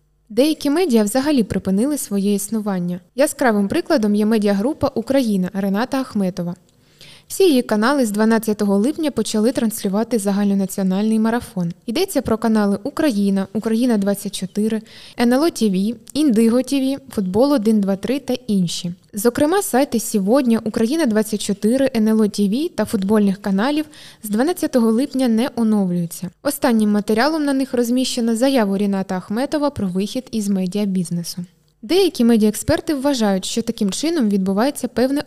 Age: 20-39